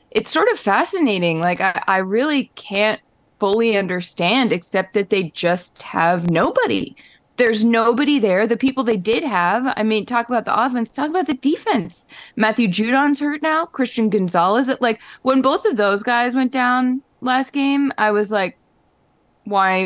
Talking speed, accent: 165 wpm, American